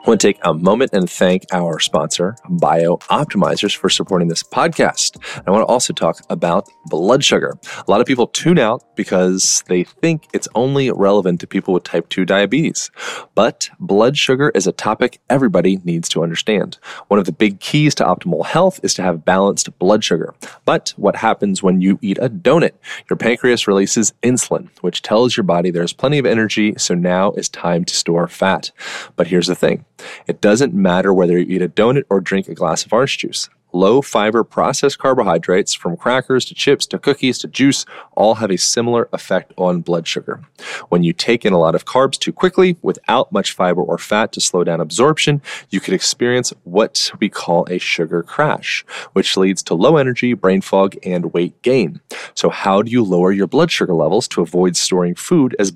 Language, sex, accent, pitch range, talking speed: English, male, American, 90-125 Hz, 195 wpm